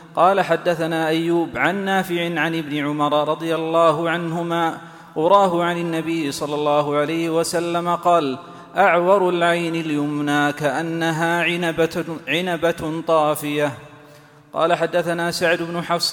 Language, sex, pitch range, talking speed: Arabic, male, 155-175 Hz, 110 wpm